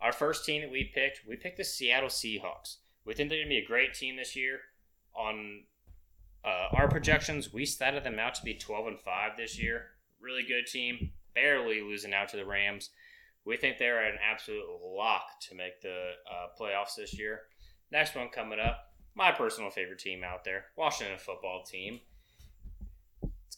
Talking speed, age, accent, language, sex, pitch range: 185 wpm, 20-39, American, English, male, 110-150 Hz